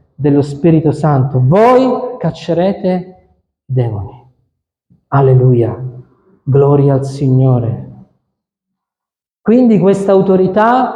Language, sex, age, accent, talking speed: Italian, male, 50-69, native, 70 wpm